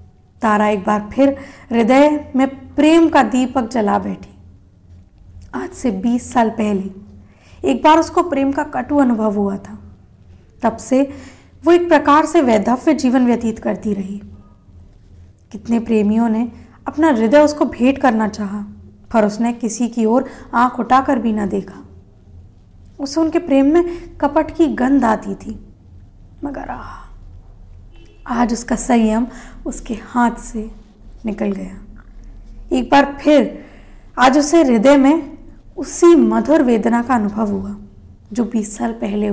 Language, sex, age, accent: Hindi, female, 20-39, native